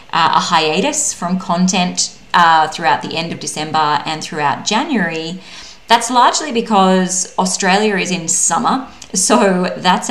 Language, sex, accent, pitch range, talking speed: English, female, Australian, 165-205 Hz, 135 wpm